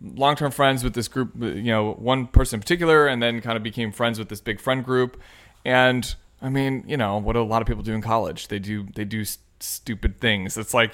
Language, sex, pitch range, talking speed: English, male, 110-135 Hz, 235 wpm